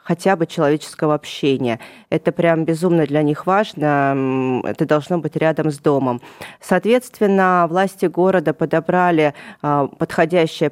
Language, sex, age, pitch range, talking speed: Russian, female, 20-39, 145-170 Hz, 120 wpm